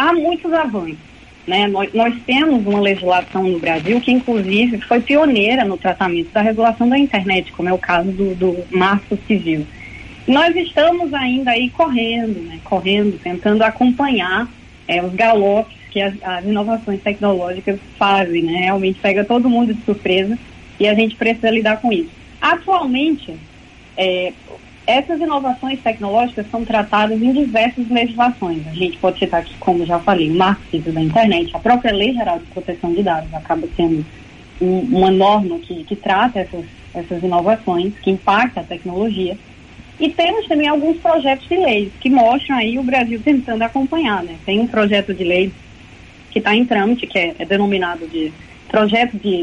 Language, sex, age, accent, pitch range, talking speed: Portuguese, female, 20-39, Brazilian, 185-240 Hz, 165 wpm